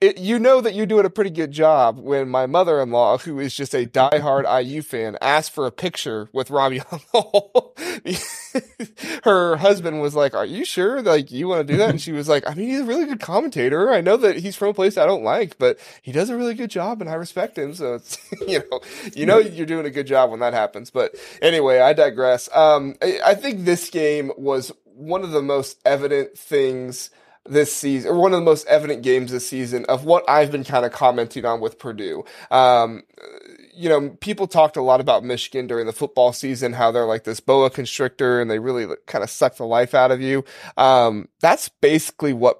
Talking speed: 220 wpm